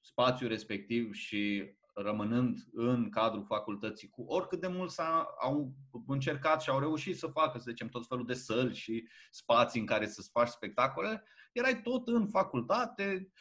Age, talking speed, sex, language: 20-39, 160 wpm, male, Romanian